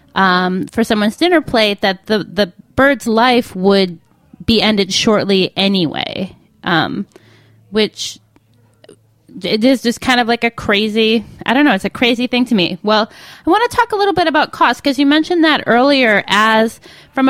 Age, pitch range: 20-39, 195-250 Hz